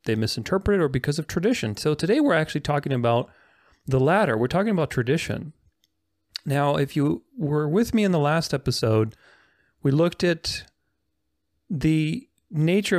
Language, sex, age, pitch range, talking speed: English, male, 40-59, 125-170 Hz, 155 wpm